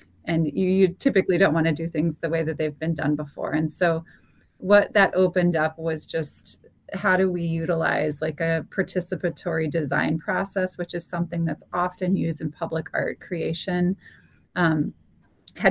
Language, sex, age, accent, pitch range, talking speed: English, female, 30-49, American, 155-180 Hz, 170 wpm